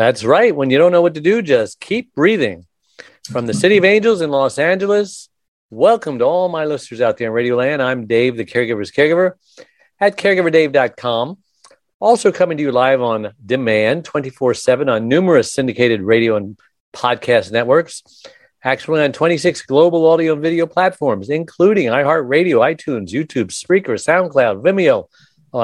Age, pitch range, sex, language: 50-69, 125-180 Hz, male, English